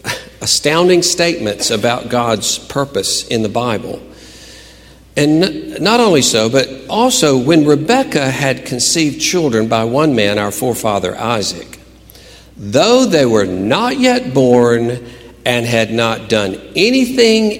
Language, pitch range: English, 100-145 Hz